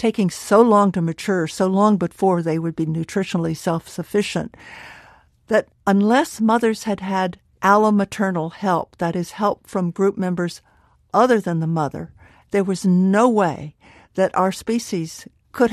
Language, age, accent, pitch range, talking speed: English, 60-79, American, 170-210 Hz, 145 wpm